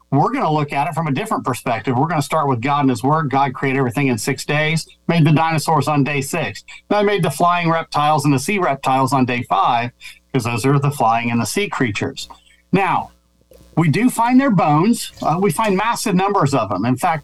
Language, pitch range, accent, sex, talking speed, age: English, 135-170 Hz, American, male, 235 wpm, 50-69